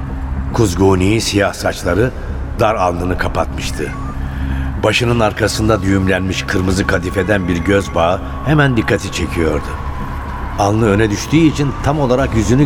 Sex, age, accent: male, 60-79, native